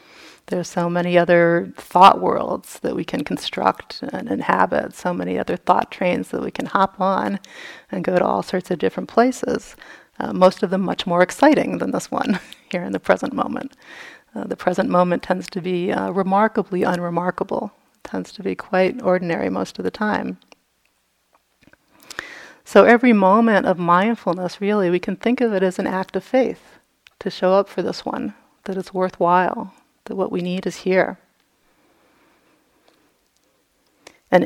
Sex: female